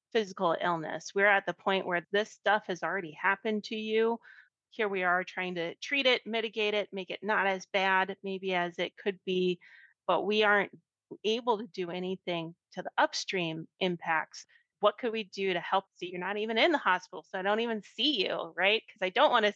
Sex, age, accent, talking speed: female, 30-49, American, 215 wpm